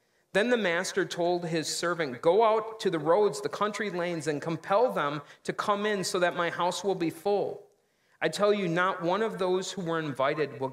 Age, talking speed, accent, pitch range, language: 40-59, 215 wpm, American, 155-190 Hz, English